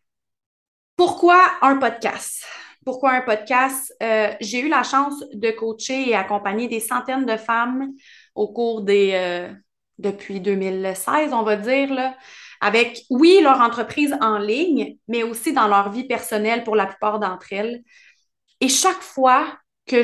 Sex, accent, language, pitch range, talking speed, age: female, Canadian, French, 210-265 Hz, 150 wpm, 20-39